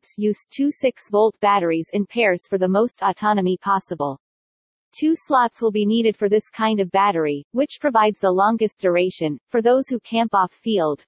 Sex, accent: female, American